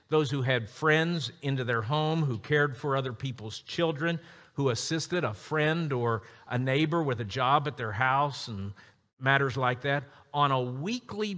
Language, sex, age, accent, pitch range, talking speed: English, male, 50-69, American, 130-175 Hz, 175 wpm